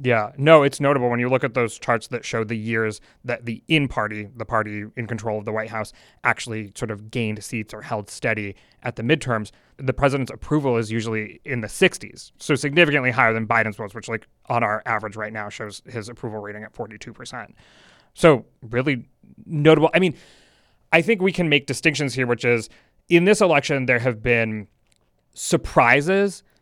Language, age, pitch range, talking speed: English, 30-49, 120-155 Hz, 190 wpm